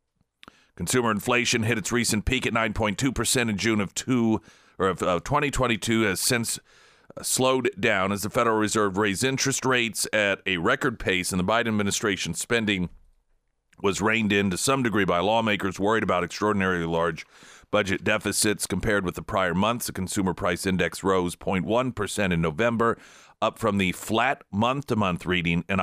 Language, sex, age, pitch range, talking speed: English, male, 40-59, 90-115 Hz, 160 wpm